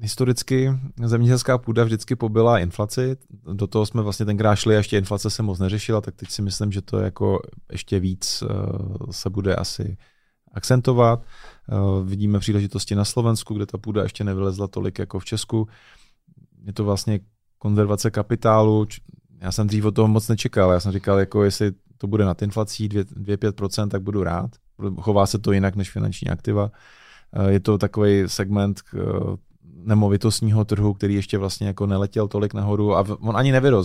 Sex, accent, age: male, native, 30-49